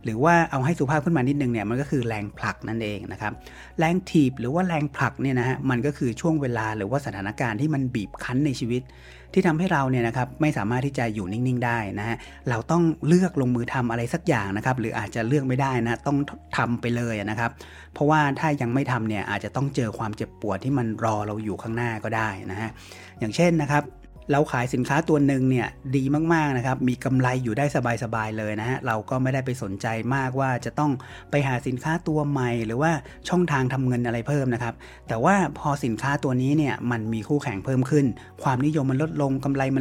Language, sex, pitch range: Thai, male, 110-140 Hz